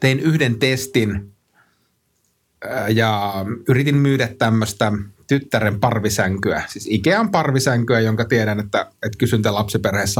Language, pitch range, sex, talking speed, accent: Finnish, 105-135 Hz, male, 105 wpm, native